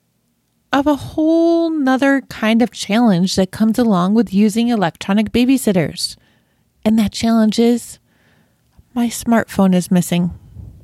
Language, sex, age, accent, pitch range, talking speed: English, female, 20-39, American, 195-250 Hz, 120 wpm